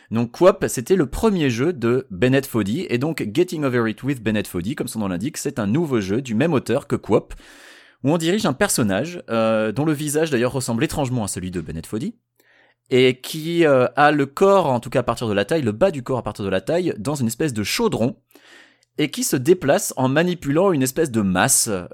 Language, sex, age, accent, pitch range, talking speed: French, male, 30-49, French, 110-140 Hz, 230 wpm